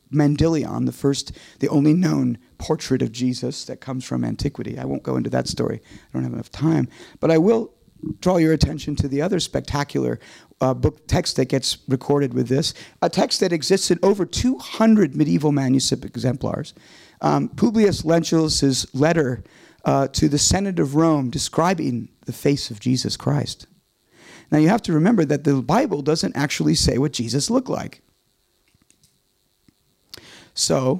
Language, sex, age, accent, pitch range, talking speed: Dutch, male, 50-69, American, 130-160 Hz, 165 wpm